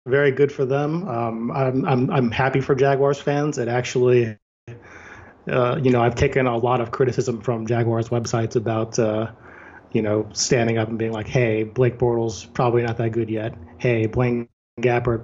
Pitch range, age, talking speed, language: 115-130 Hz, 30-49, 180 wpm, English